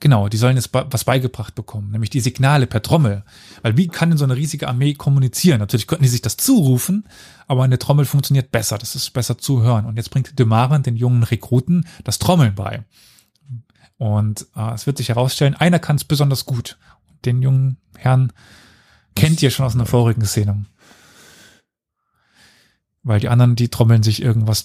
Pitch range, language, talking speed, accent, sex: 110-130 Hz, German, 185 wpm, German, male